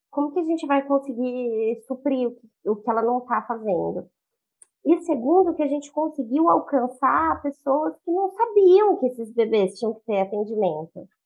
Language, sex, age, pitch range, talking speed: Portuguese, female, 20-39, 230-300 Hz, 165 wpm